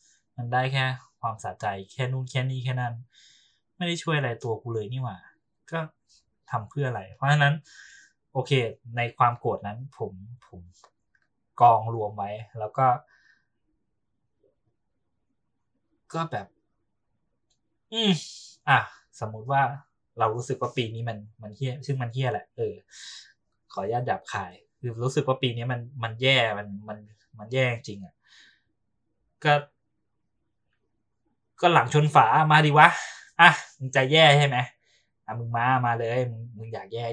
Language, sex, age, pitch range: Thai, male, 20-39, 110-135 Hz